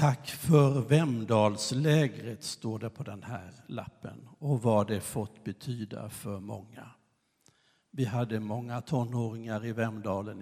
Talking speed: 125 wpm